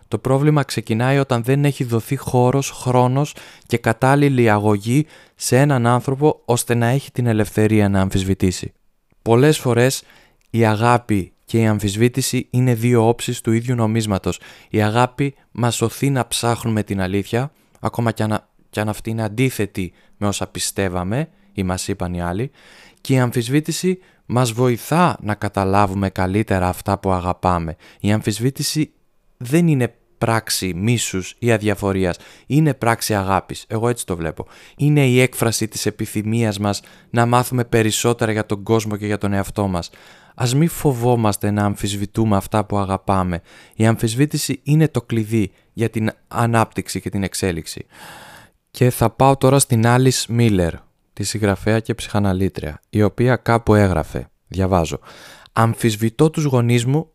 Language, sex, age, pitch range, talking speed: Greek, male, 20-39, 100-125 Hz, 145 wpm